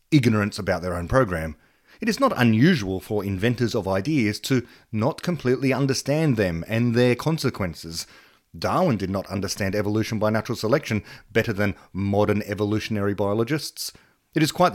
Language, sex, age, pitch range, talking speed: English, male, 30-49, 105-145 Hz, 150 wpm